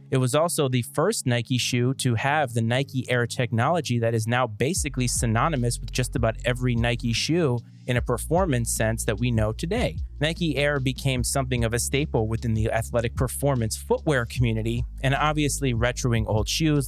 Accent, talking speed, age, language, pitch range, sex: American, 180 wpm, 30-49, English, 115-135 Hz, male